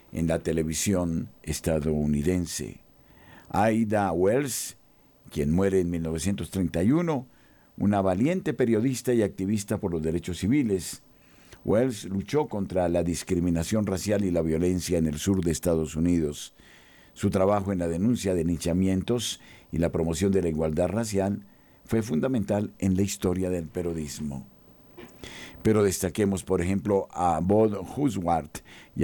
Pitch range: 85-105 Hz